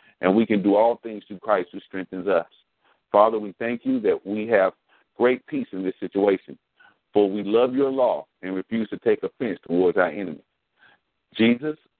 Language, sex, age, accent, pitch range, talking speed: English, male, 50-69, American, 95-125 Hz, 185 wpm